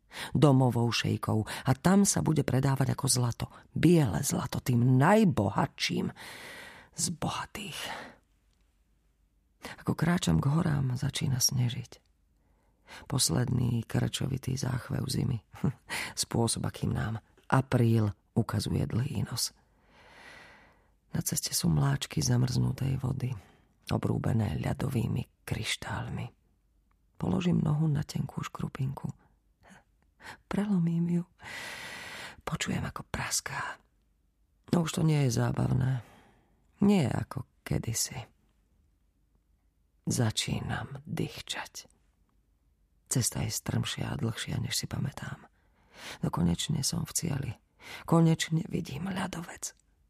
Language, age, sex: Slovak, 40-59, female